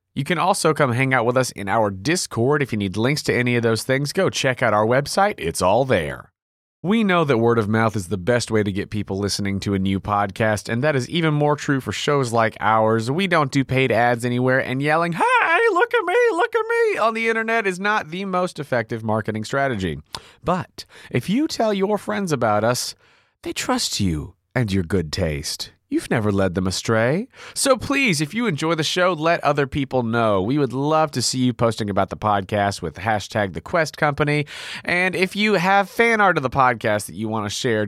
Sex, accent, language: male, American, English